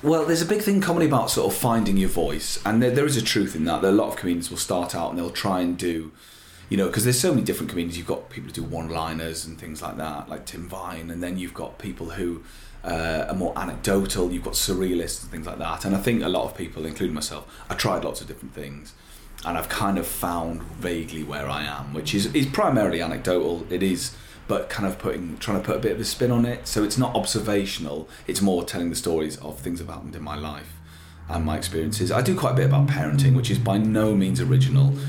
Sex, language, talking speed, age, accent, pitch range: male, English, 255 wpm, 30-49, British, 80-115 Hz